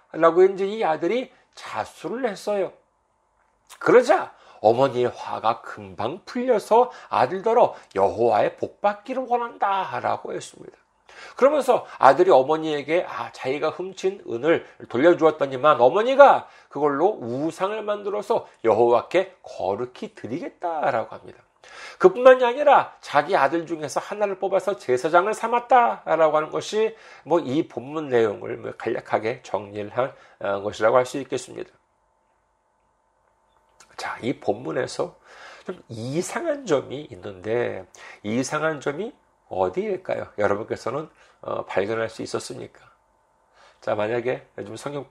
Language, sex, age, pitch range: Korean, male, 40-59, 125-200 Hz